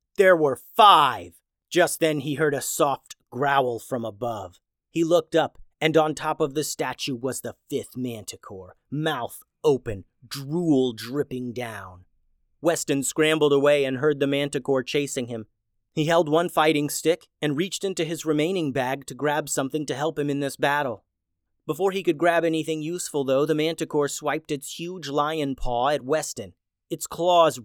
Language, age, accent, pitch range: English, 30-49, American, 120-155 Hz